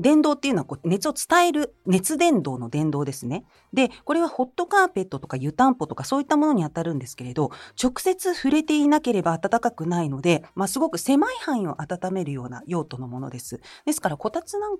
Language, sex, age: Japanese, female, 40-59